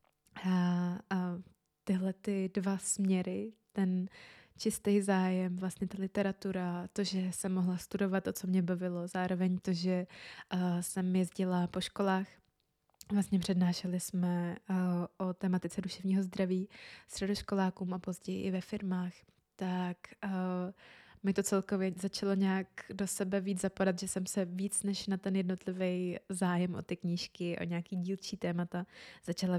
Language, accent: Czech, native